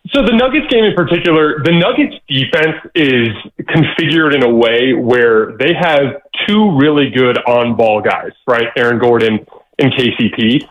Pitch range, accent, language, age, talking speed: 125-160 Hz, American, English, 20-39, 150 wpm